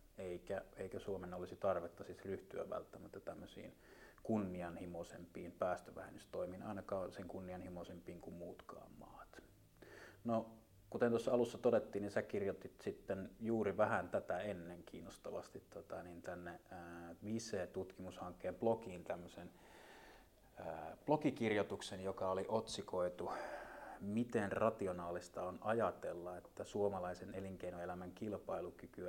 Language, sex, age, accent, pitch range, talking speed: Finnish, male, 30-49, native, 90-110 Hz, 105 wpm